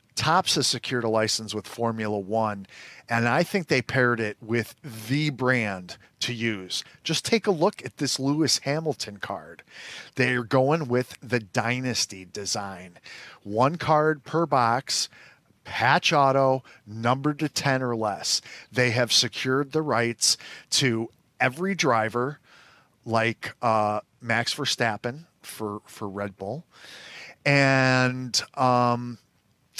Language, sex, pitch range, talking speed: English, male, 115-160 Hz, 125 wpm